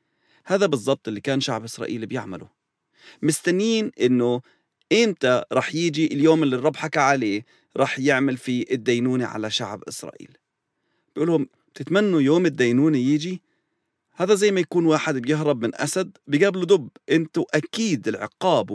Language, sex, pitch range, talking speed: English, male, 115-160 Hz, 135 wpm